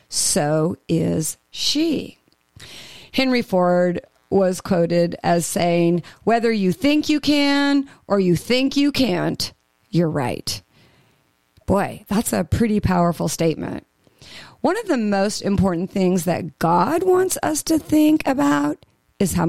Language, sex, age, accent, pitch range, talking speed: English, female, 40-59, American, 175-255 Hz, 130 wpm